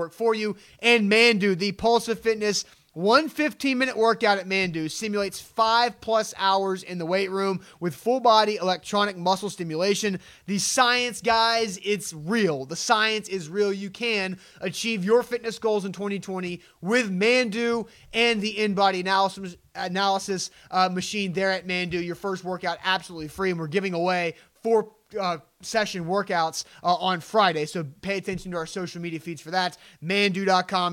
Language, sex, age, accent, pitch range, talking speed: English, male, 30-49, American, 180-225 Hz, 160 wpm